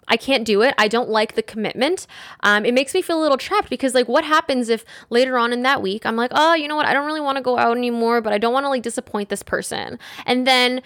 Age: 10-29